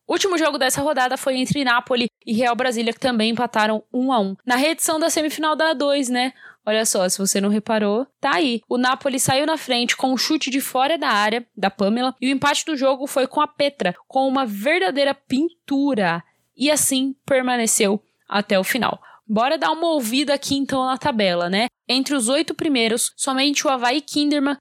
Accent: Brazilian